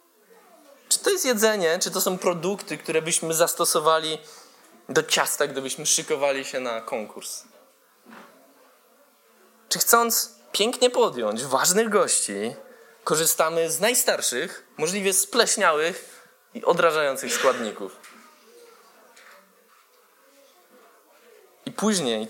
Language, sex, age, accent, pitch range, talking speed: Polish, male, 20-39, native, 160-200 Hz, 90 wpm